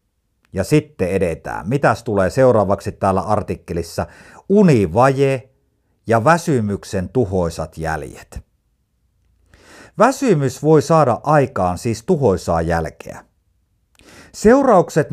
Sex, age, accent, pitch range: male, 50-69, native, 95-145 Hz